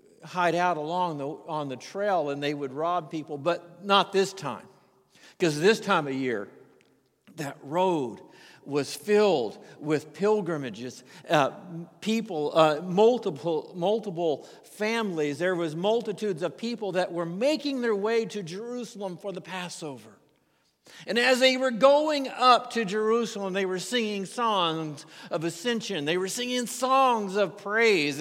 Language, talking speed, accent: English, 145 wpm, American